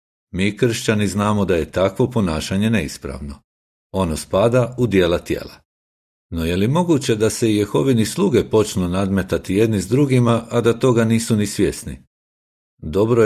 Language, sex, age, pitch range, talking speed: Croatian, male, 50-69, 75-110 Hz, 155 wpm